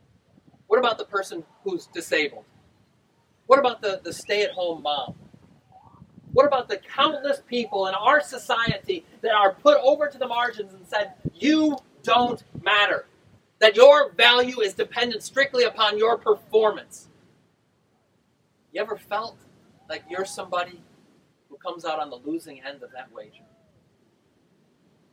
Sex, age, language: male, 40-59, English